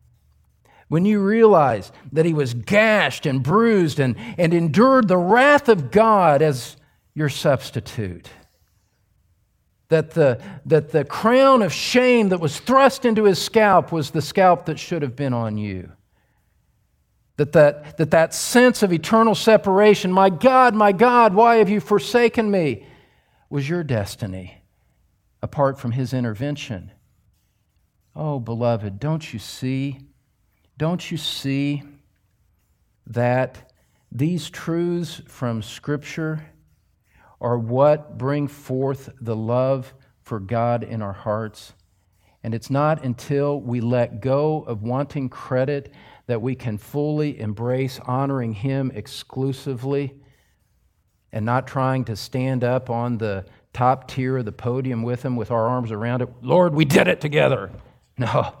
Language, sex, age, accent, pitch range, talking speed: English, male, 50-69, American, 115-160 Hz, 135 wpm